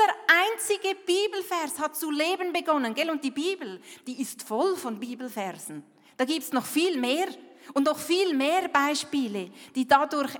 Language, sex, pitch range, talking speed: German, female, 210-275 Hz, 165 wpm